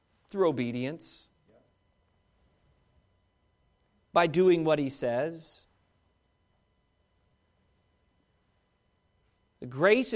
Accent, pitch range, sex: American, 155-245 Hz, male